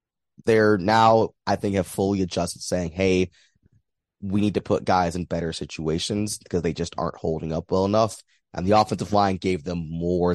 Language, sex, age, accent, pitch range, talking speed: English, male, 20-39, American, 80-100 Hz, 185 wpm